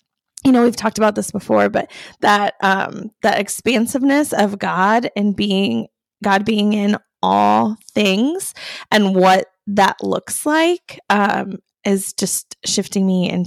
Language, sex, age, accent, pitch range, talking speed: English, female, 20-39, American, 185-240 Hz, 145 wpm